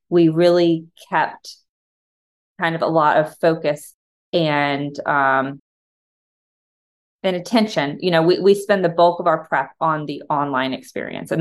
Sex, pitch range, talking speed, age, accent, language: female, 150-185 Hz, 145 wpm, 20-39, American, English